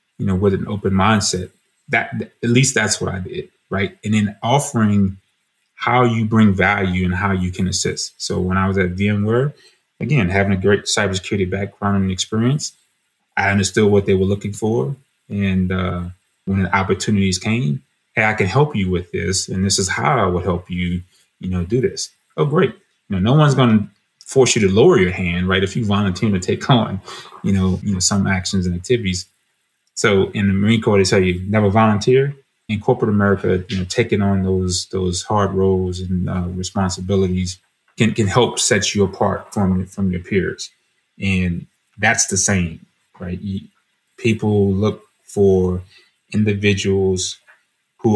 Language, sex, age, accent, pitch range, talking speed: English, male, 30-49, American, 95-105 Hz, 180 wpm